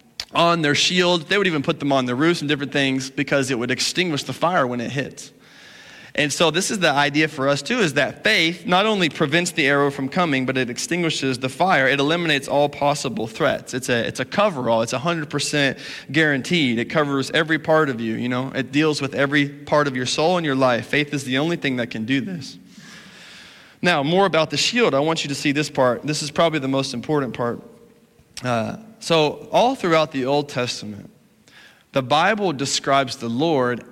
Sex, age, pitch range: male, 30-49, 125-155 Hz